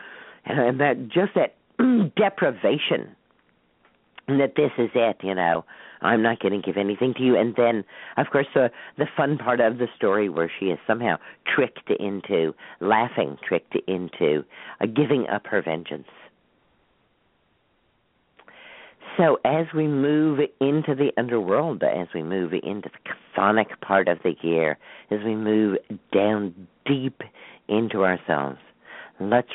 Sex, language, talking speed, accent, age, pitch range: female, English, 140 wpm, American, 50-69, 95-140 Hz